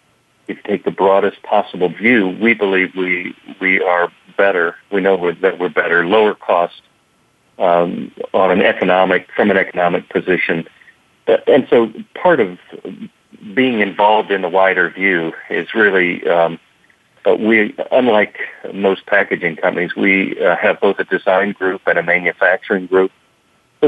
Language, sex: English, male